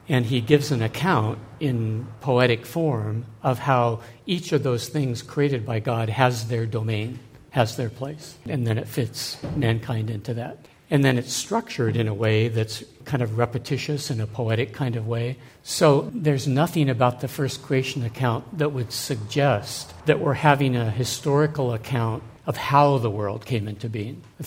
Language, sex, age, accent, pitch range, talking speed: English, male, 60-79, American, 115-140 Hz, 175 wpm